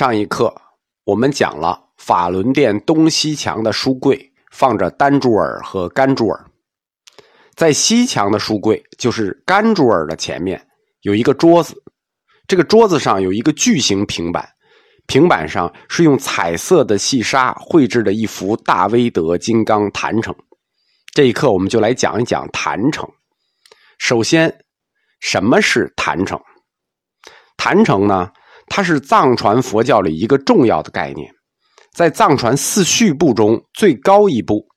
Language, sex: Chinese, male